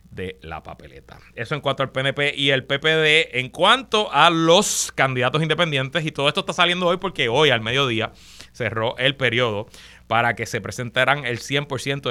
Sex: male